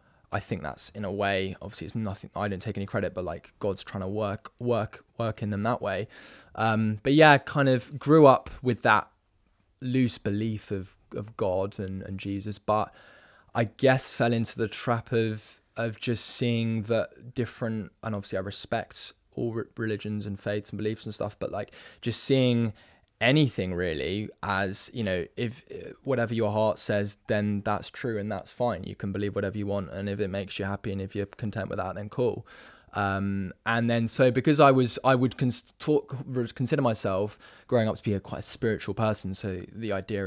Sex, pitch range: male, 100-120 Hz